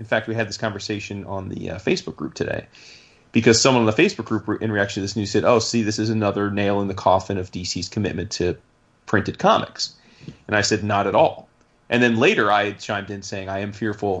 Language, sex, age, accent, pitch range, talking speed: English, male, 30-49, American, 100-115 Hz, 230 wpm